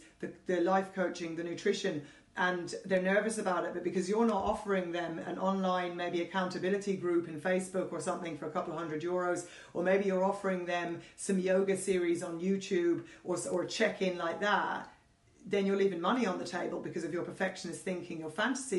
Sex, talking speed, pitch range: female, 190 wpm, 180-210 Hz